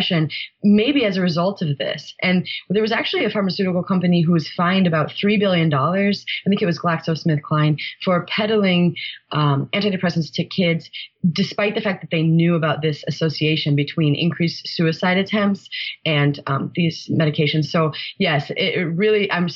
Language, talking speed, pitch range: English, 160 wpm, 160-200 Hz